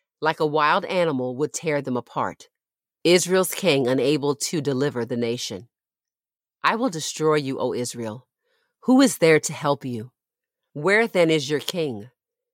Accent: American